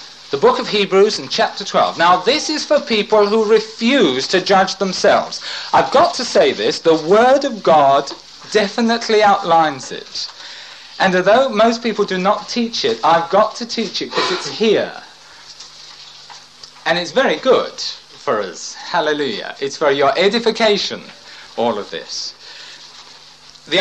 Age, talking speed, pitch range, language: 50-69, 150 wpm, 190-230 Hz, English